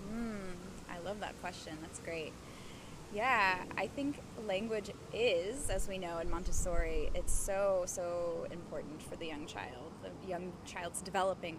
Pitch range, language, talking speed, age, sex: 175-215 Hz, English, 150 wpm, 20-39, female